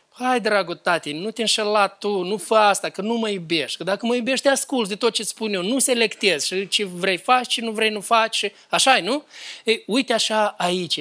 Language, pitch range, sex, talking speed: Romanian, 170-230 Hz, male, 220 wpm